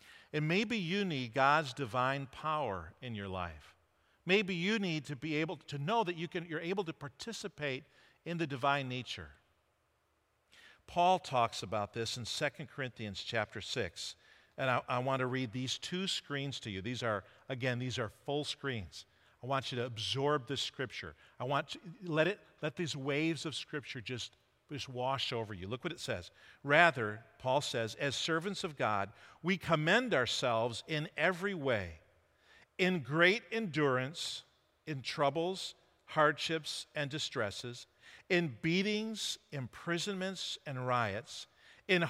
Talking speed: 155 wpm